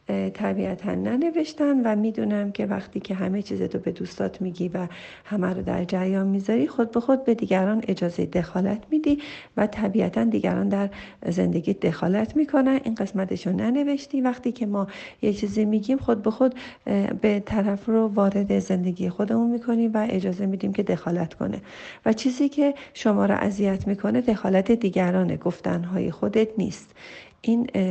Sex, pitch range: female, 190-230 Hz